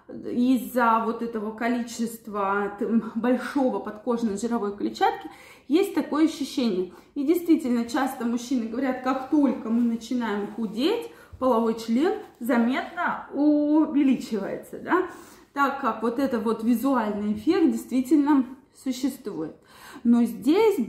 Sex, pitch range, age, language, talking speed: female, 235-310 Hz, 20-39, Russian, 105 wpm